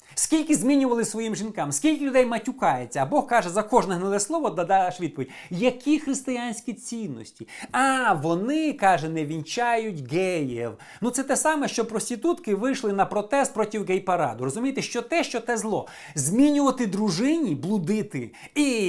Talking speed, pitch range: 145 wpm, 140-220 Hz